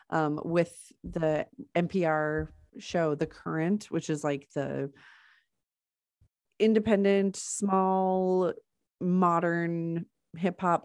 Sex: female